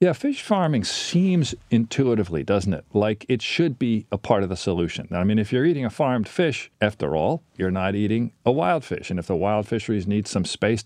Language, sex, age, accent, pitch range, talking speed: English, male, 40-59, American, 105-135 Hz, 220 wpm